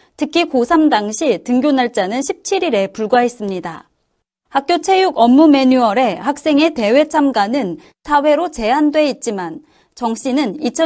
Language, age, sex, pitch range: Korean, 30-49, female, 230-310 Hz